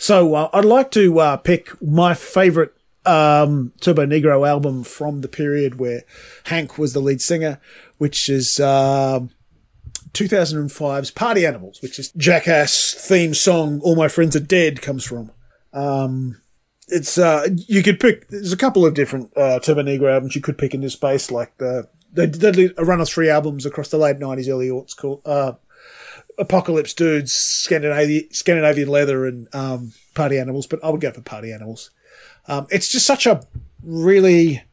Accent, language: Australian, English